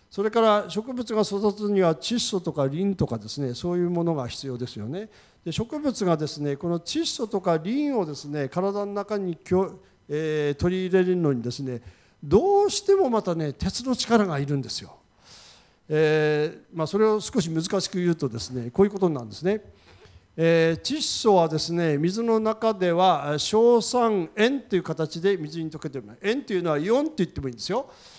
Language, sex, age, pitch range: Japanese, male, 50-69, 155-225 Hz